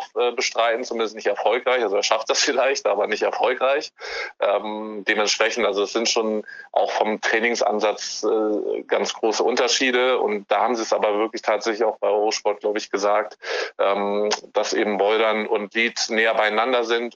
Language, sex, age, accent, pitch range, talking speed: German, male, 20-39, German, 105-125 Hz, 170 wpm